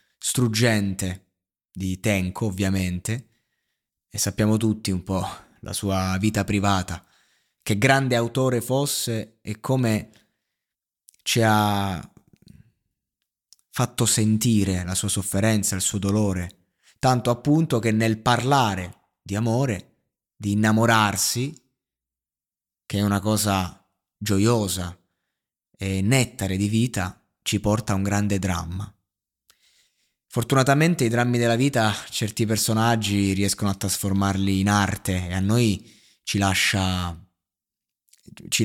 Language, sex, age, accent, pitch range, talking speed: Italian, male, 20-39, native, 95-115 Hz, 110 wpm